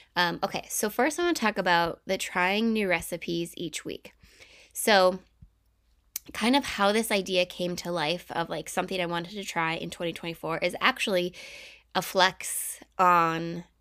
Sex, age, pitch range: female, 20-39, 180-225 Hz